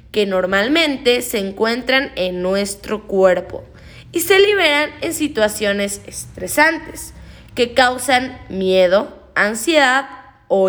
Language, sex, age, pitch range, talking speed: Spanish, female, 20-39, 210-285 Hz, 100 wpm